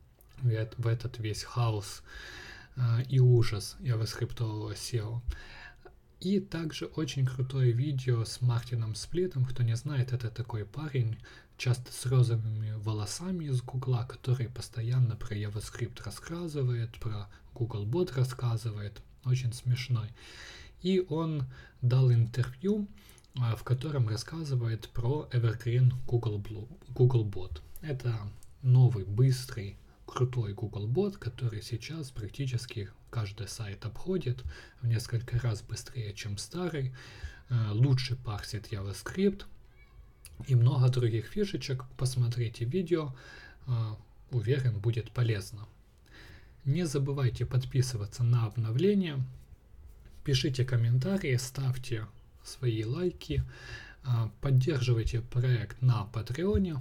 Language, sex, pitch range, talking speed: Russian, male, 110-130 Hz, 100 wpm